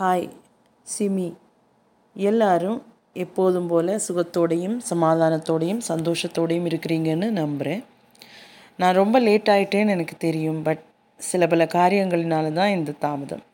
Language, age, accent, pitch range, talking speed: Tamil, 20-39, native, 165-215 Hz, 100 wpm